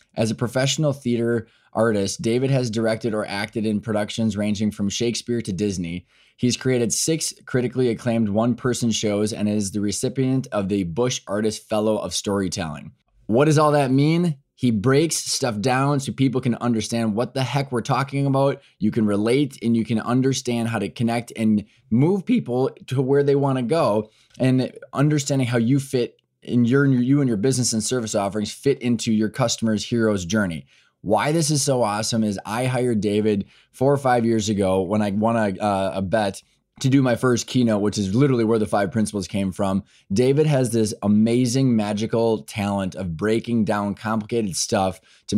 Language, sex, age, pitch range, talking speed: English, male, 20-39, 105-130 Hz, 180 wpm